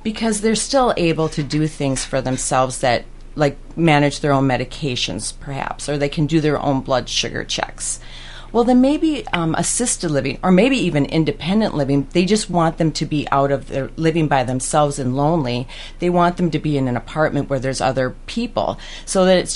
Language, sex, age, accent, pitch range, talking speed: English, female, 40-59, American, 135-170 Hz, 200 wpm